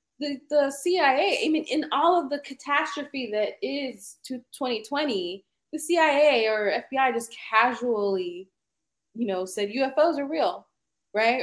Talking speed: 140 wpm